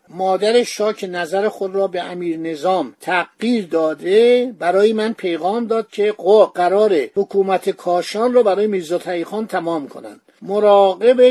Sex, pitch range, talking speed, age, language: male, 175-225 Hz, 135 wpm, 50-69, Persian